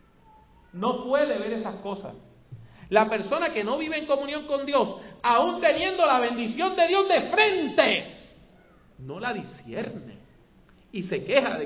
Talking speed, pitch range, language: 150 wpm, 140-225 Hz, English